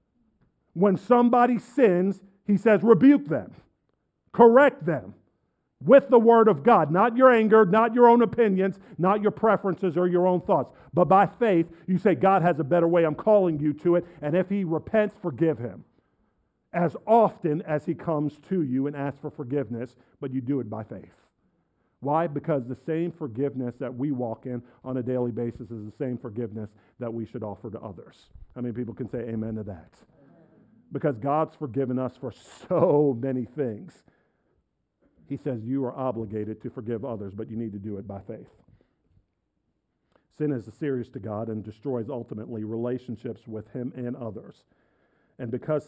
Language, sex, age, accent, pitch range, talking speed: English, male, 50-69, American, 120-175 Hz, 180 wpm